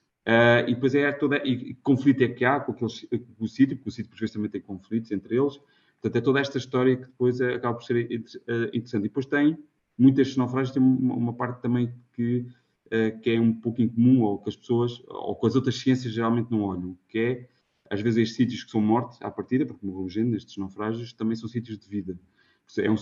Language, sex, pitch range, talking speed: Portuguese, male, 110-125 Hz, 225 wpm